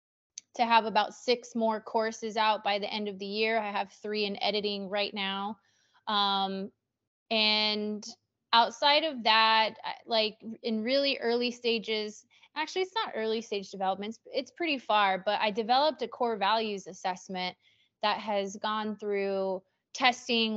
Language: English